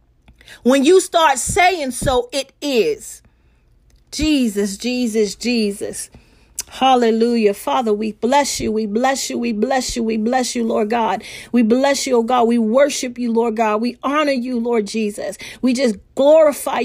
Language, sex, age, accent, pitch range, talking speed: English, female, 40-59, American, 240-300 Hz, 155 wpm